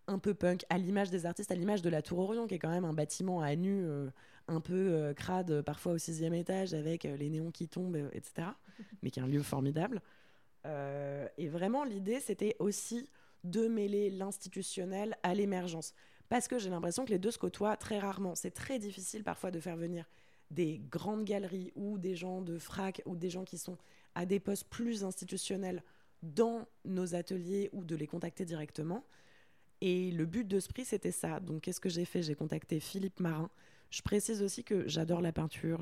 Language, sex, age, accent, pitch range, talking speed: French, female, 20-39, French, 160-200 Hz, 205 wpm